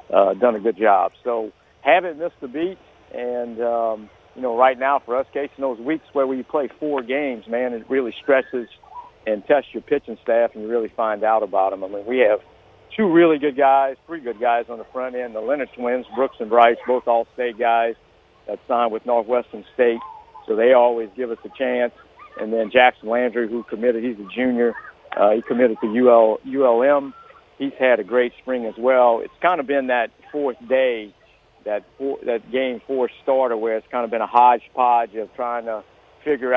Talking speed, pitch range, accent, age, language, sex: 210 wpm, 115-140 Hz, American, 50-69, English, male